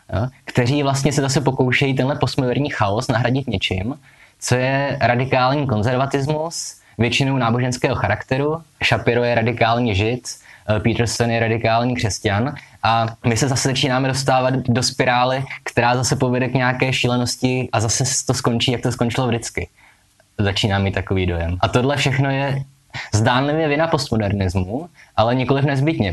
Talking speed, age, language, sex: 140 wpm, 20-39, Czech, male